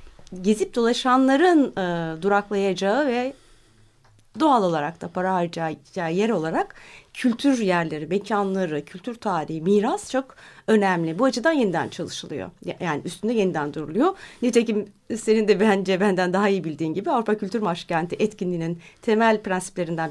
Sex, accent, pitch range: female, native, 175-240 Hz